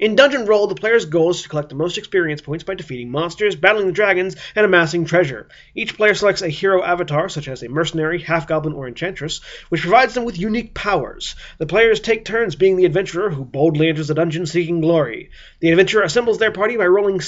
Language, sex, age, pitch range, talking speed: English, male, 30-49, 165-210 Hz, 215 wpm